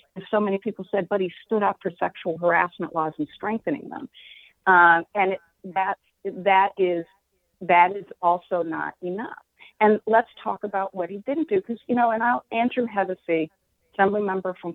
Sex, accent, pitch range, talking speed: female, American, 185-245 Hz, 175 wpm